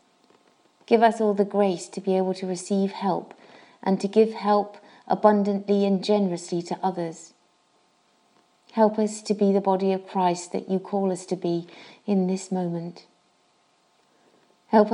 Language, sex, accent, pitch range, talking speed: English, female, British, 185-215 Hz, 155 wpm